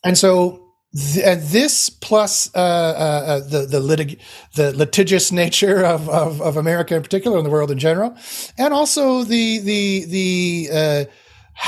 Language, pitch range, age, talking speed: English, 145-195 Hz, 40-59, 155 wpm